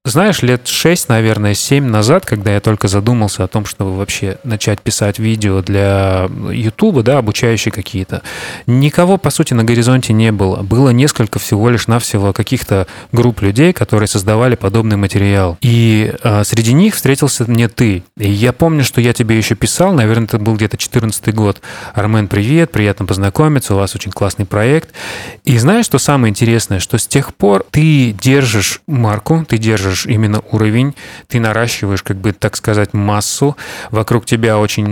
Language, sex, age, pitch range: Russian, male, 30-49, 105-125 Hz